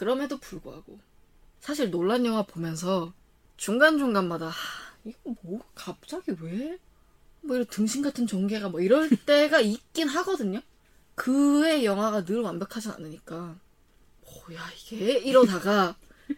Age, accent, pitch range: 20-39, native, 185-275 Hz